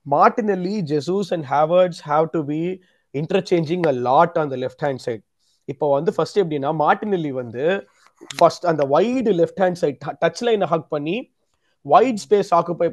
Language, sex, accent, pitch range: Tamil, male, native, 155-210 Hz